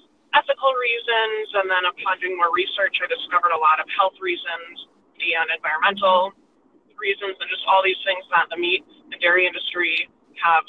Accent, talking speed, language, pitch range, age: American, 170 wpm, English, 180-270 Hz, 20-39